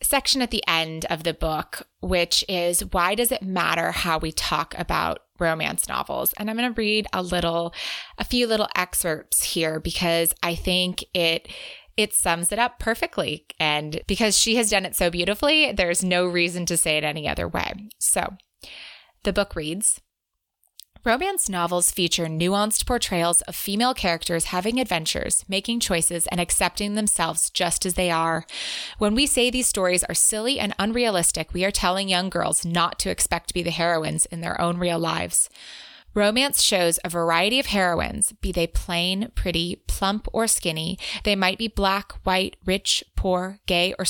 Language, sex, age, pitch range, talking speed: English, female, 20-39, 170-210 Hz, 175 wpm